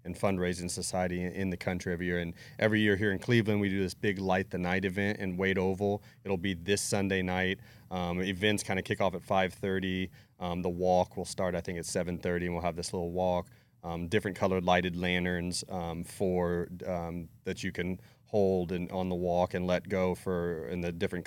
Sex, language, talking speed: male, English, 215 wpm